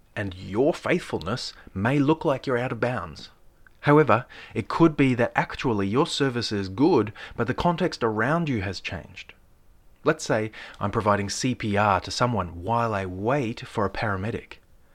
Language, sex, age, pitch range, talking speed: English, male, 30-49, 95-125 Hz, 160 wpm